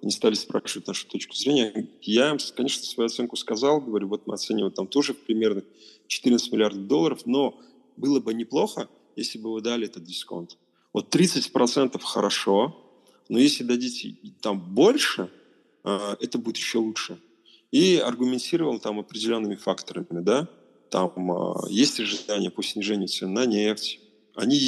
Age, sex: 30-49, male